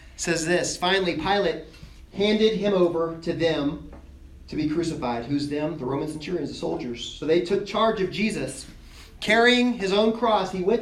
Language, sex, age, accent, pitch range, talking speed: English, male, 40-59, American, 150-205 Hz, 170 wpm